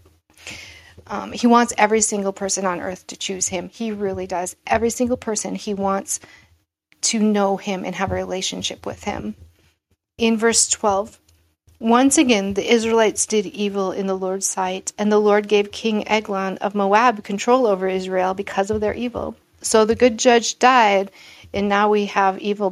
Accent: American